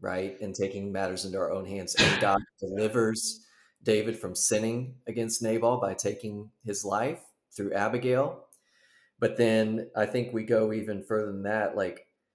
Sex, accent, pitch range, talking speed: male, American, 100-115 Hz, 160 wpm